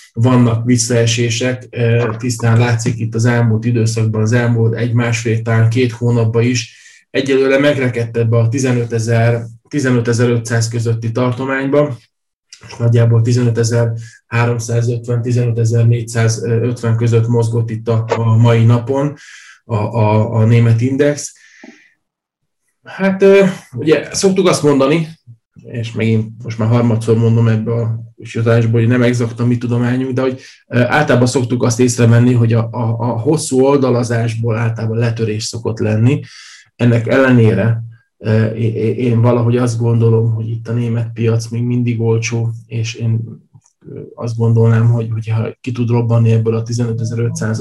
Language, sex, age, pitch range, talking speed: Hungarian, male, 20-39, 115-120 Hz, 125 wpm